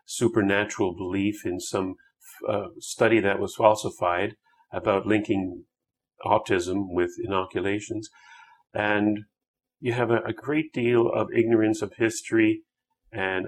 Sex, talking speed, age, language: male, 115 wpm, 40-59, English